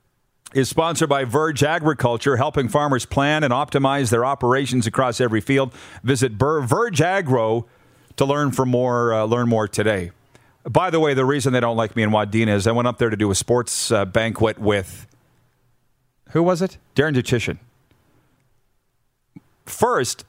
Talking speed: 165 wpm